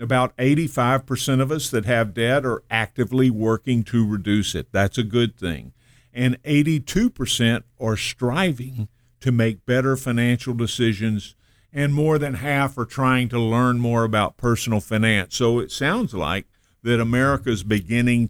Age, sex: 50-69, male